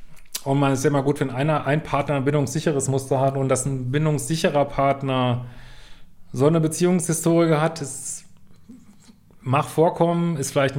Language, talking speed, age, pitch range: German, 155 wpm, 40-59, 125-150 Hz